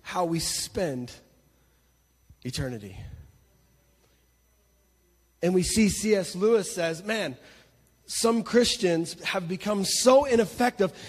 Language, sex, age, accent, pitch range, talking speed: English, male, 30-49, American, 170-225 Hz, 90 wpm